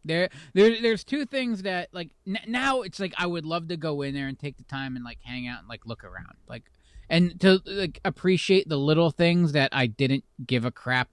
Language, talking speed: English, 235 wpm